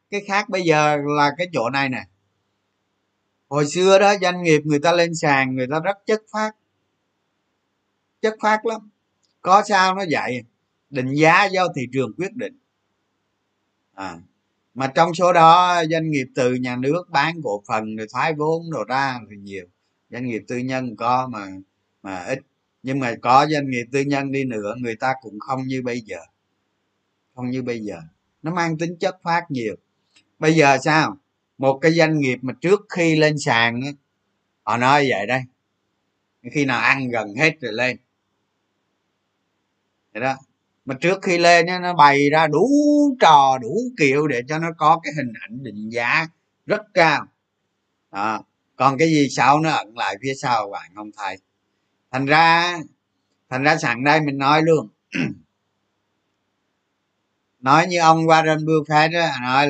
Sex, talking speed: male, 165 wpm